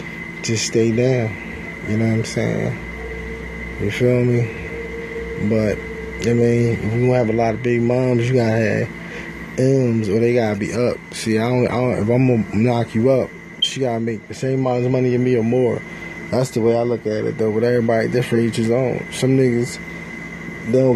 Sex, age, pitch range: male, 20-39, 115-130 Hz